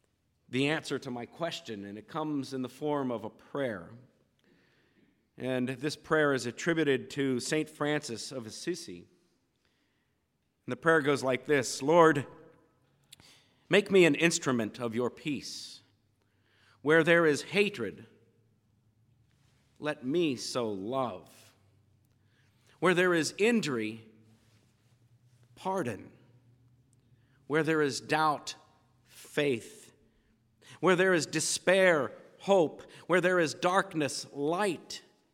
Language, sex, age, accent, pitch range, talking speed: English, male, 50-69, American, 120-165 Hz, 110 wpm